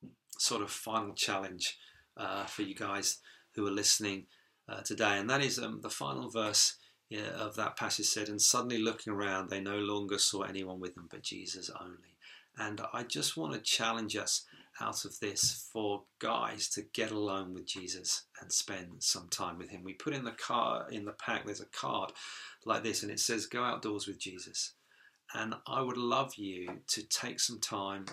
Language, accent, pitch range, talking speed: English, British, 100-115 Hz, 195 wpm